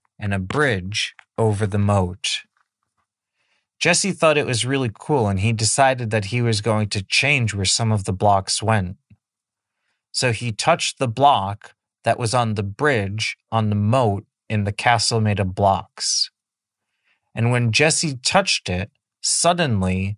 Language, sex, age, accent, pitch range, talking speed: English, male, 30-49, American, 105-135 Hz, 155 wpm